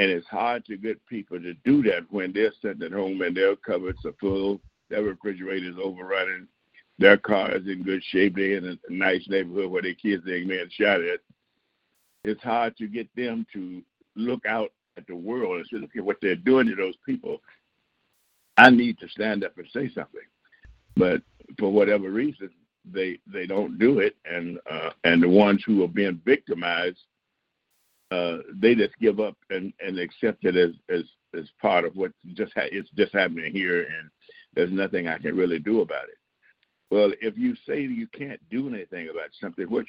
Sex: male